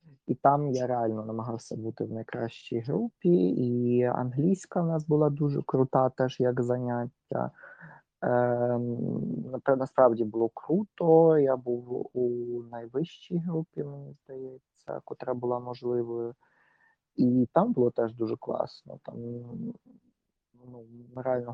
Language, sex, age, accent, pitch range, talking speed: Ukrainian, male, 30-49, native, 125-165 Hz, 115 wpm